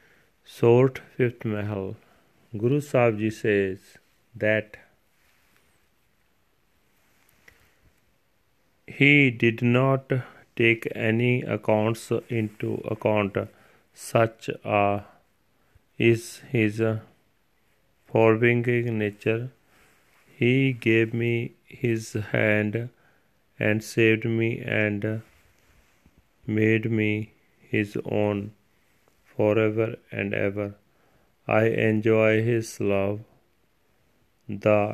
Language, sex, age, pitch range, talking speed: Punjabi, male, 40-59, 105-120 Hz, 75 wpm